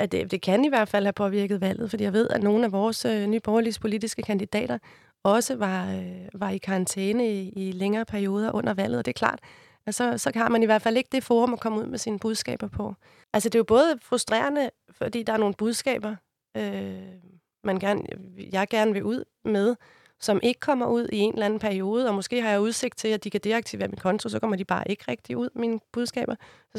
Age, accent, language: 30-49, native, Danish